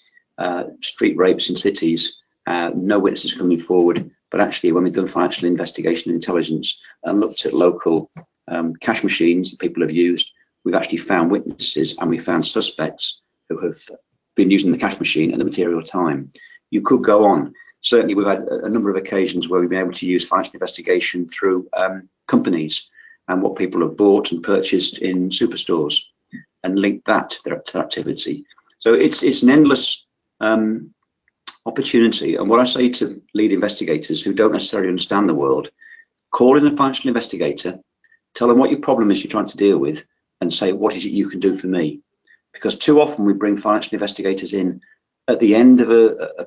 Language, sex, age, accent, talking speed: English, male, 40-59, British, 190 wpm